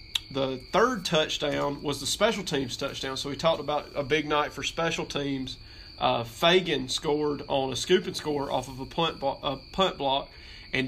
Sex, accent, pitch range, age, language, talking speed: male, American, 135-155 Hz, 30-49, English, 195 wpm